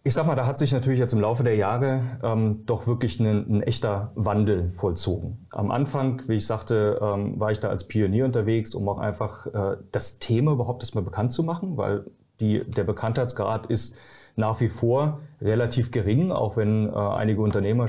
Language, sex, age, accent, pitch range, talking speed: German, male, 30-49, German, 105-120 Hz, 190 wpm